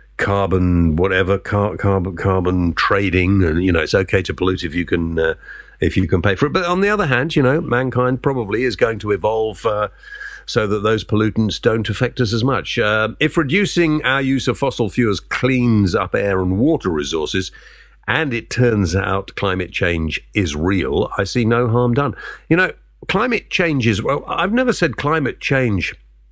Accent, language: British, English